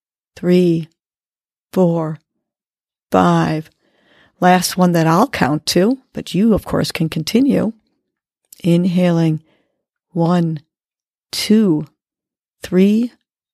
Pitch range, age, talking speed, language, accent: 155-210 Hz, 40-59, 85 wpm, English, American